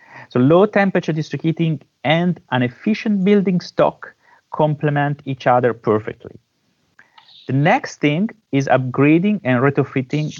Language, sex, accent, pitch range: English, male, Italian, 120-155 Hz